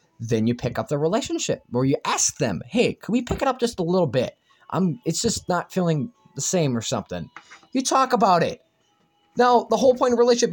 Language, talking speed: English, 230 wpm